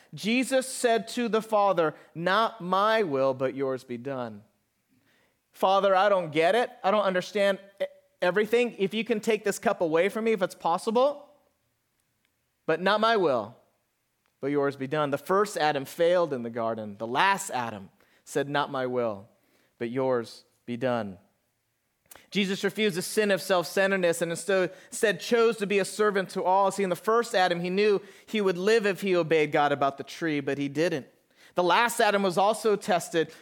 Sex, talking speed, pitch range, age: male, 180 wpm, 155-215 Hz, 30-49